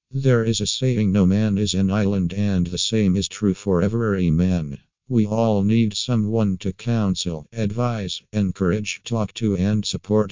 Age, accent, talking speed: 50-69, American, 170 wpm